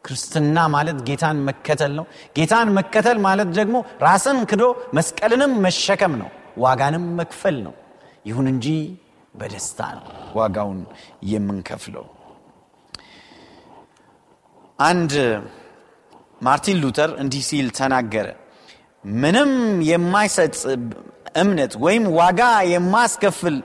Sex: male